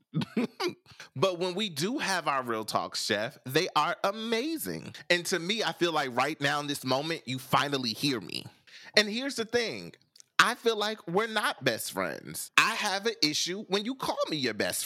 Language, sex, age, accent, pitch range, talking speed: English, male, 30-49, American, 140-190 Hz, 195 wpm